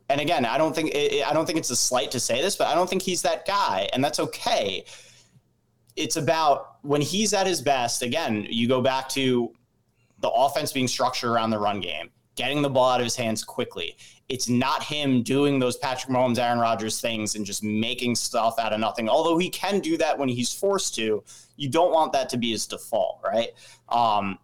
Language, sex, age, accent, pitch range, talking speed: English, male, 30-49, American, 110-140 Hz, 215 wpm